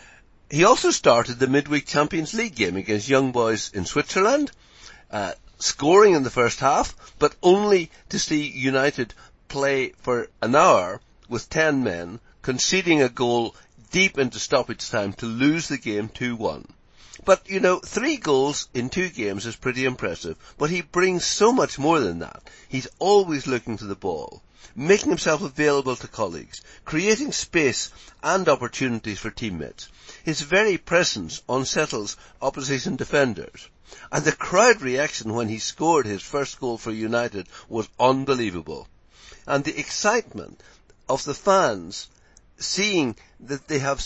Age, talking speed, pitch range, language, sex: 60-79, 150 wpm, 115-155 Hz, English, male